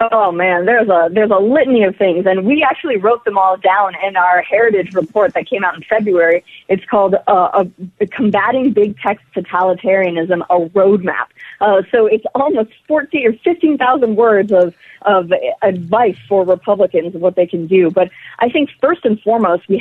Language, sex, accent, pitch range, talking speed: English, female, American, 185-230 Hz, 190 wpm